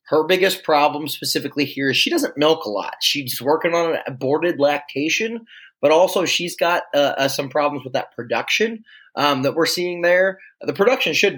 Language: English